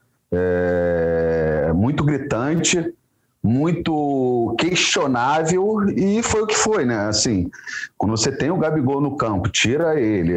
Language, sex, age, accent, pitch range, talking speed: Portuguese, male, 40-59, Brazilian, 110-170 Hz, 110 wpm